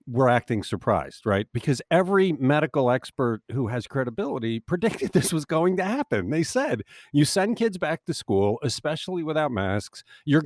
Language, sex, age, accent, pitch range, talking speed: English, male, 50-69, American, 100-150 Hz, 165 wpm